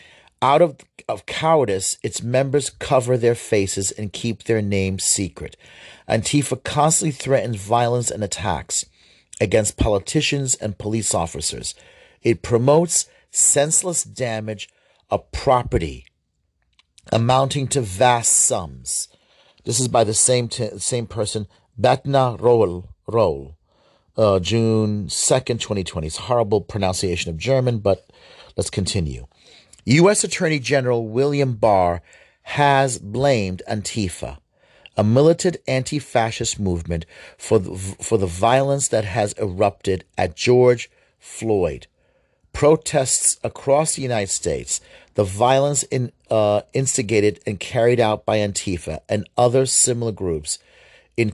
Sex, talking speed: male, 120 wpm